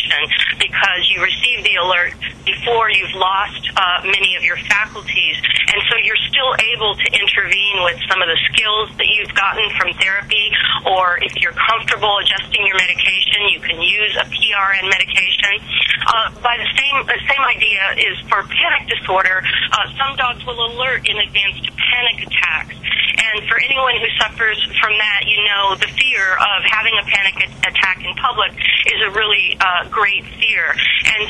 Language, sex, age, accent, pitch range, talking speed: English, female, 40-59, American, 190-235 Hz, 165 wpm